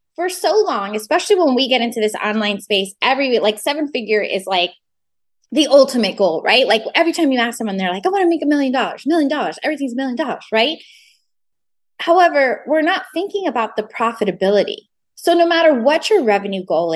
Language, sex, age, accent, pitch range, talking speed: English, female, 20-39, American, 205-315 Hz, 200 wpm